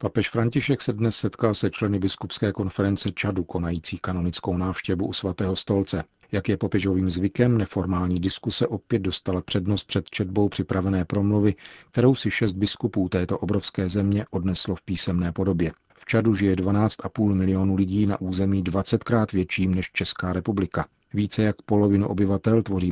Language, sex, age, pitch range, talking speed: Czech, male, 40-59, 95-105 Hz, 150 wpm